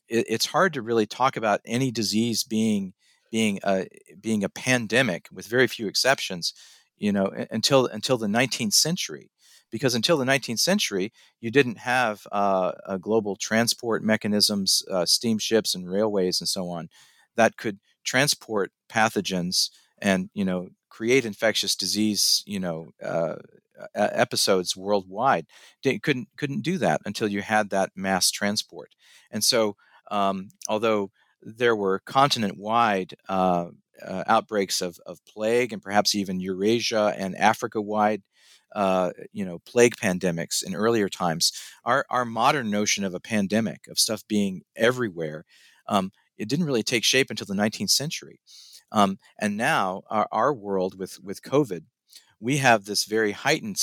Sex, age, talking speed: male, 50-69, 150 wpm